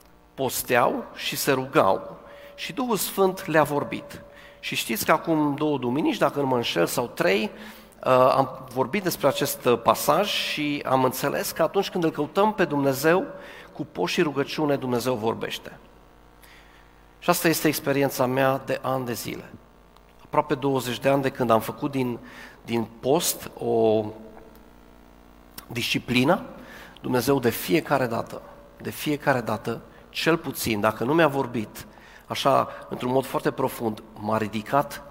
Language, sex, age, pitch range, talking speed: Romanian, male, 40-59, 115-155 Hz, 140 wpm